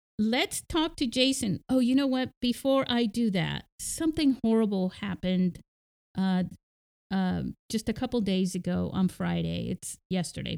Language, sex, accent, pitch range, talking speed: English, female, American, 180-215 Hz, 145 wpm